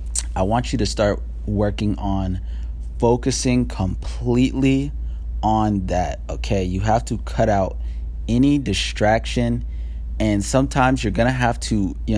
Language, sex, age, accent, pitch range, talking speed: English, male, 20-39, American, 90-105 Hz, 130 wpm